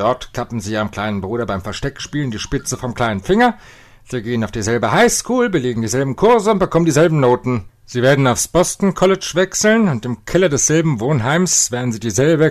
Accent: German